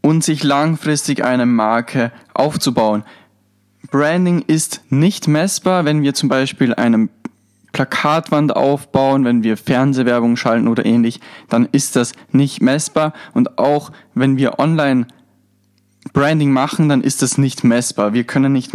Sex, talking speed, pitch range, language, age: male, 135 wpm, 120-145 Hz, German, 10-29